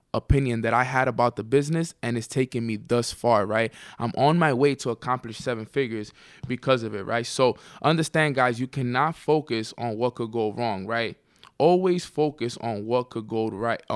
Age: 20-39